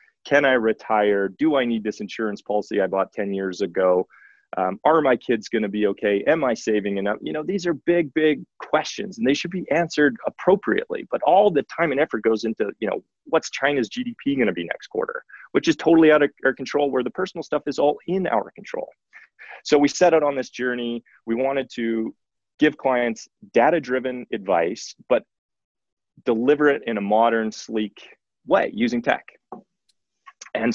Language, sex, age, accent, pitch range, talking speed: English, male, 30-49, American, 115-150 Hz, 190 wpm